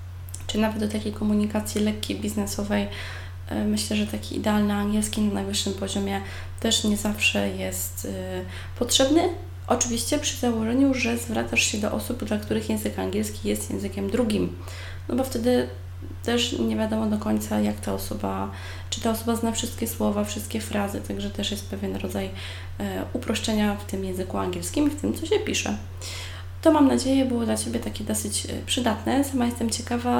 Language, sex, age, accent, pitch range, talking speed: Polish, female, 20-39, native, 95-120 Hz, 165 wpm